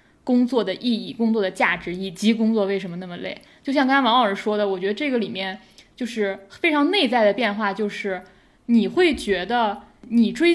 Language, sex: Chinese, female